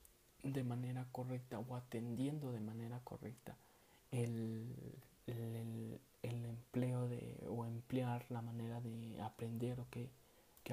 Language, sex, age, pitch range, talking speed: Spanish, male, 20-39, 110-125 Hz, 130 wpm